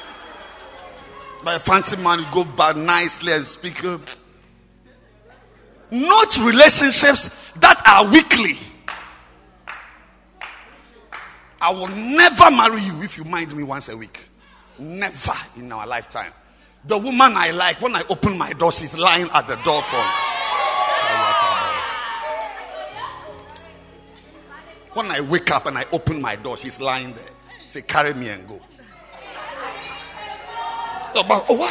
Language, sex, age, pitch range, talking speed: English, male, 50-69, 150-230 Hz, 120 wpm